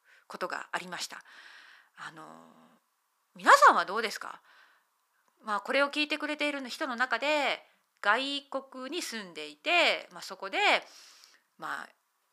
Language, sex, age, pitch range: Japanese, female, 30-49, 200-315 Hz